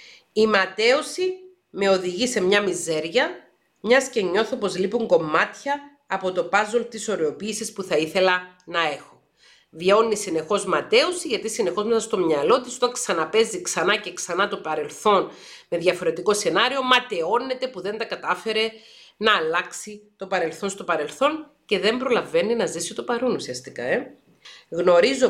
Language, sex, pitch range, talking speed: Greek, female, 170-265 Hz, 150 wpm